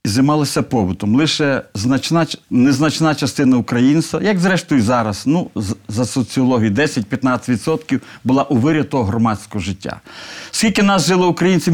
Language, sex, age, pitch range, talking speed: Ukrainian, male, 50-69, 120-155 Hz, 110 wpm